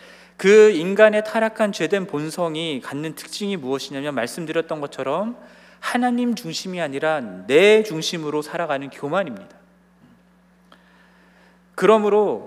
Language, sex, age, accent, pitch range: Korean, male, 40-59, native, 160-205 Hz